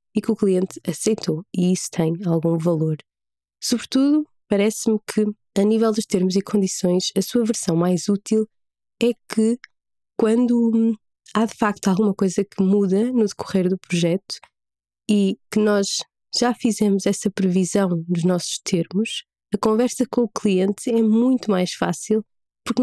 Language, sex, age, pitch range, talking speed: Portuguese, female, 20-39, 175-215 Hz, 155 wpm